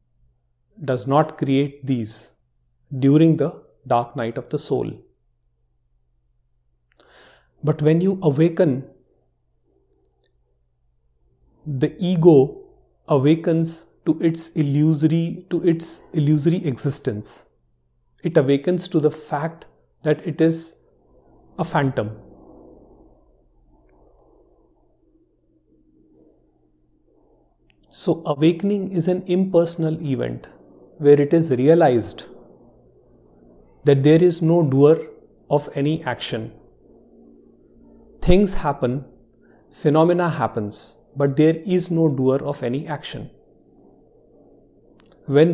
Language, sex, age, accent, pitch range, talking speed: English, male, 30-49, Indian, 115-160 Hz, 85 wpm